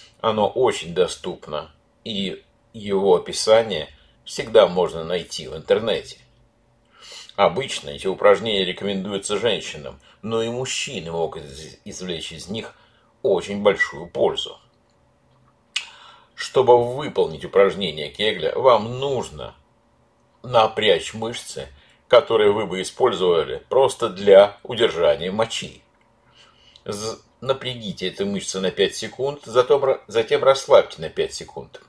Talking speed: 100 wpm